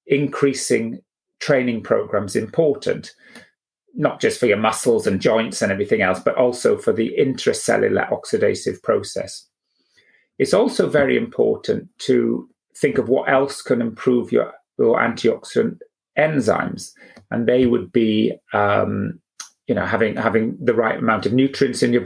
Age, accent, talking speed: 30-49, British, 135 wpm